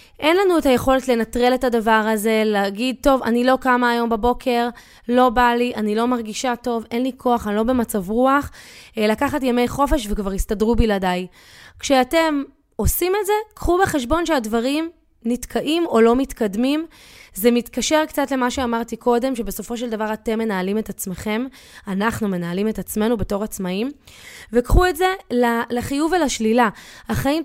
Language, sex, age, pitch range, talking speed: Hebrew, female, 20-39, 215-265 Hz, 155 wpm